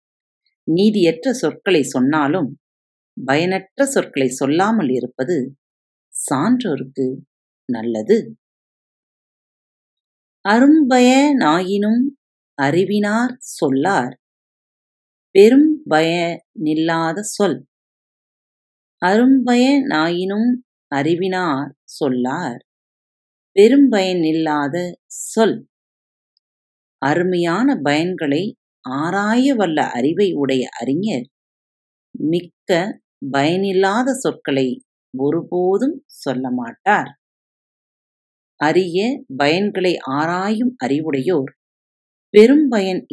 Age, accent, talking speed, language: 40-59, native, 50 wpm, Tamil